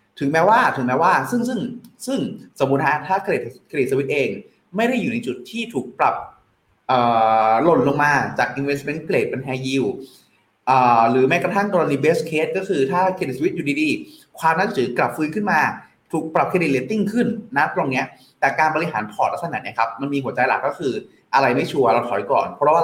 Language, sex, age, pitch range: Thai, male, 30-49, 130-195 Hz